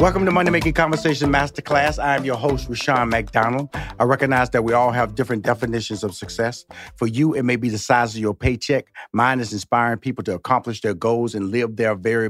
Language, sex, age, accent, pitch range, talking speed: English, male, 40-59, American, 110-140 Hz, 215 wpm